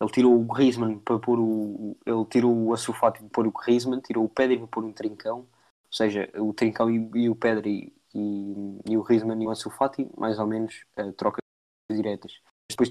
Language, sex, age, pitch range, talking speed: Portuguese, male, 20-39, 105-120 Hz, 205 wpm